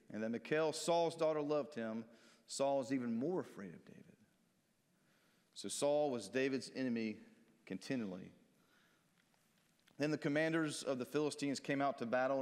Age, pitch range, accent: 40-59, 135-180 Hz, American